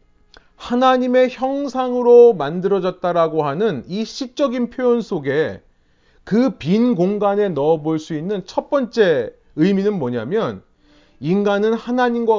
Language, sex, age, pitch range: Korean, male, 30-49, 145-235 Hz